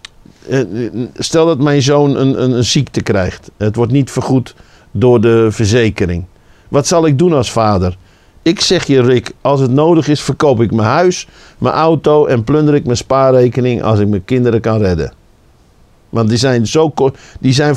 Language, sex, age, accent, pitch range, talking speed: Dutch, male, 50-69, Dutch, 115-160 Hz, 180 wpm